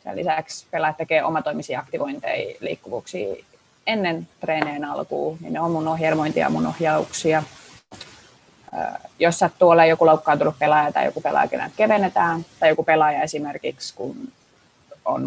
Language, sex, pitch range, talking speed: Finnish, female, 155-200 Hz, 130 wpm